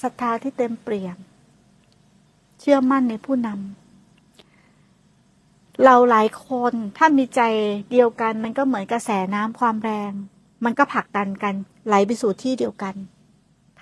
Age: 60-79